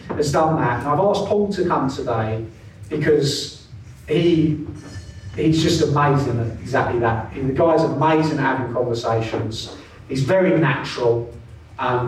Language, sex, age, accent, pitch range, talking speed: English, male, 30-49, British, 120-175 Hz, 145 wpm